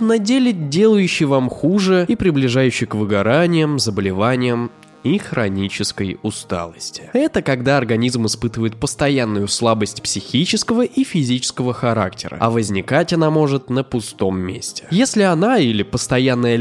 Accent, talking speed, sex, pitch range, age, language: native, 125 wpm, male, 105-155 Hz, 20-39, Russian